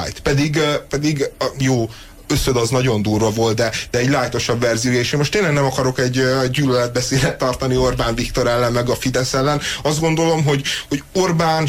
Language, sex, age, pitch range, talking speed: Hungarian, male, 30-49, 120-145 Hz, 180 wpm